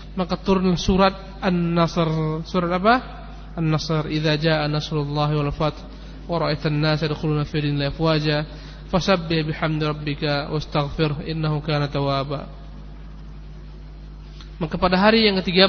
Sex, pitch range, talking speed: male, 150-170 Hz, 40 wpm